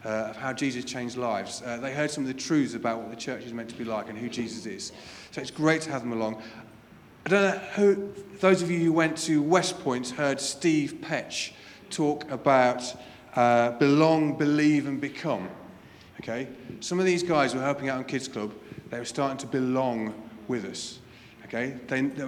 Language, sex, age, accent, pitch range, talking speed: English, male, 30-49, British, 120-155 Hz, 205 wpm